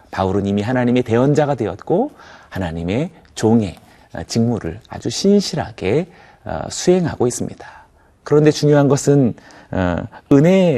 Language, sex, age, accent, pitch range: Korean, male, 40-59, native, 95-140 Hz